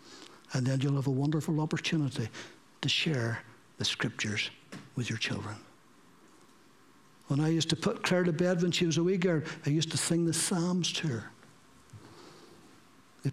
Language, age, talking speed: English, 60-79, 165 wpm